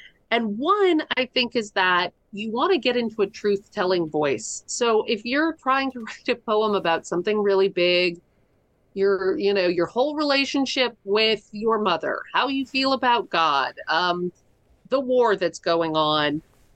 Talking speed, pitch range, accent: 170 wpm, 160-210 Hz, American